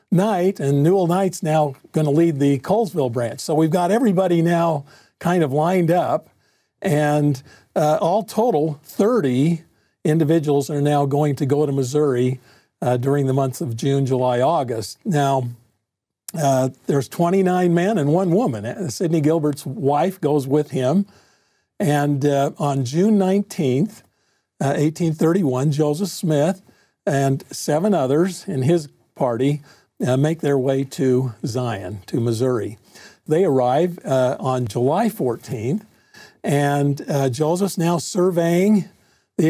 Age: 50-69